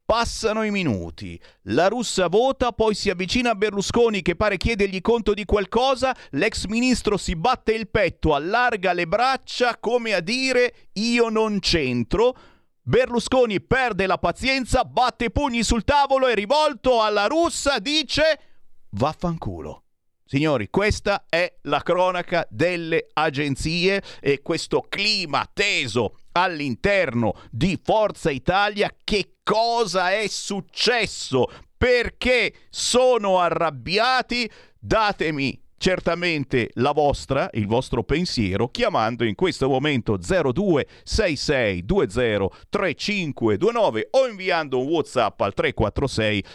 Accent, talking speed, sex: native, 110 wpm, male